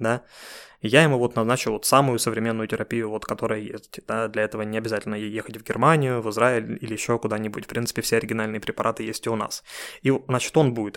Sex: male